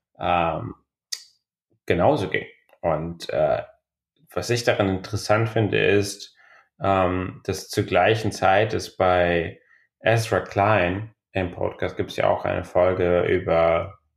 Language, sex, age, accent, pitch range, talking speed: German, male, 30-49, German, 90-105 Hz, 125 wpm